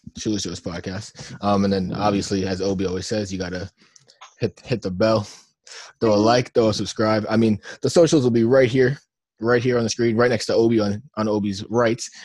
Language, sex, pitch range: English, male, 100-115 Hz